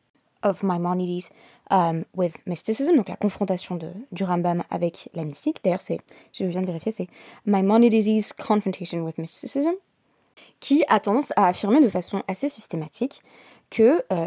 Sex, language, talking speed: female, French, 145 wpm